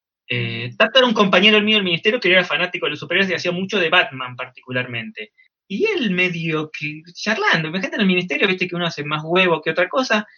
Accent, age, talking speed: Argentinian, 20-39, 220 wpm